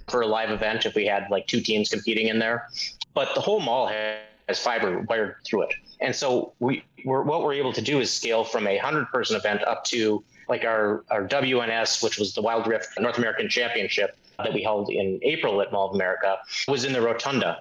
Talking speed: 225 wpm